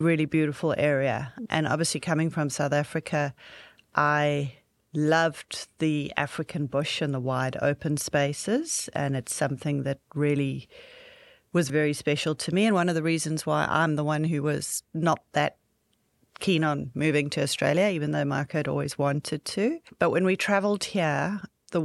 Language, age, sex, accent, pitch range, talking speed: English, 40-59, female, Australian, 150-175 Hz, 165 wpm